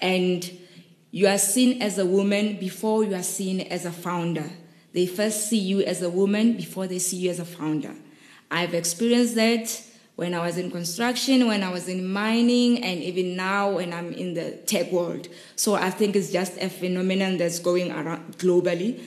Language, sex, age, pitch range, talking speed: English, female, 20-39, 180-215 Hz, 190 wpm